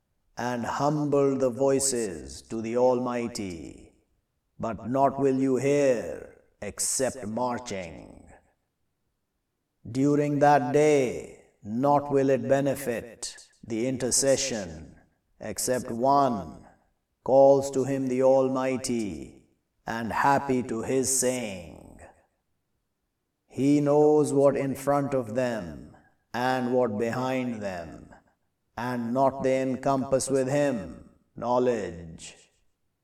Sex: male